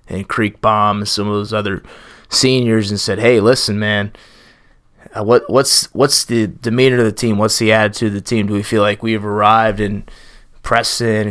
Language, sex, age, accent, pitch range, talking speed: English, male, 20-39, American, 100-115 Hz, 190 wpm